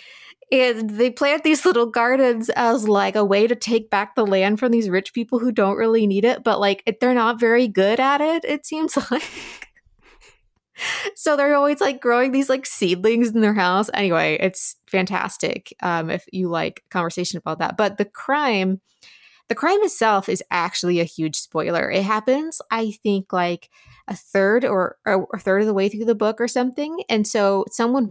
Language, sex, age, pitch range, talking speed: English, female, 20-39, 175-235 Hz, 190 wpm